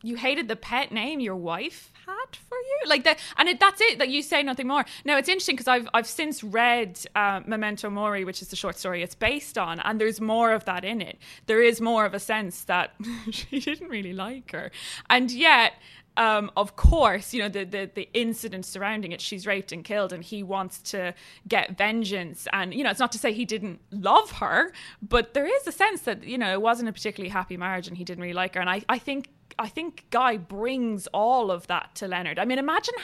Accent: British